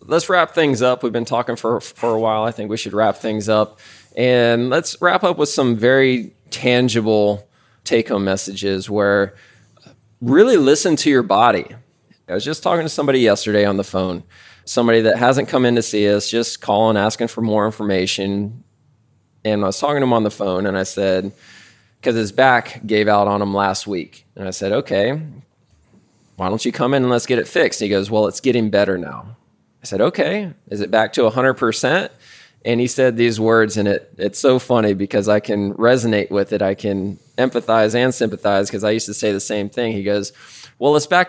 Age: 20-39